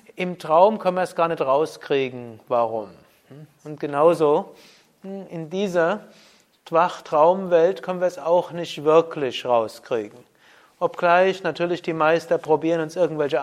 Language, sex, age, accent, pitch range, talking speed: German, male, 30-49, German, 145-170 Hz, 125 wpm